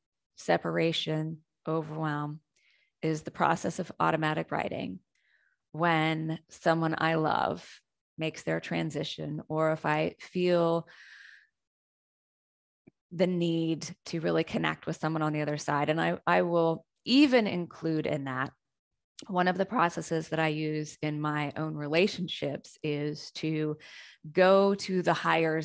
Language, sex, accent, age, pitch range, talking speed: English, female, American, 20-39, 150-170 Hz, 130 wpm